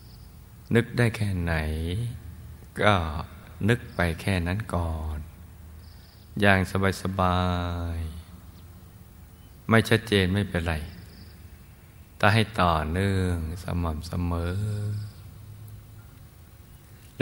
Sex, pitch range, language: male, 85-95 Hz, Thai